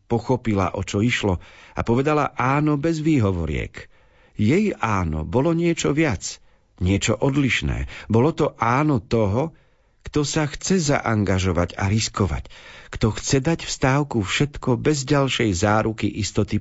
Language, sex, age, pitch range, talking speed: Slovak, male, 50-69, 100-135 Hz, 125 wpm